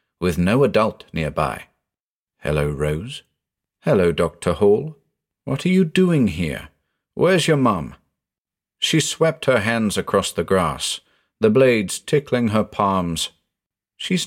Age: 50-69